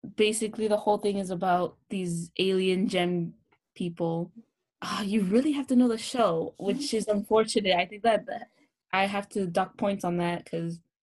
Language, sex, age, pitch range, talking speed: English, female, 20-39, 175-205 Hz, 180 wpm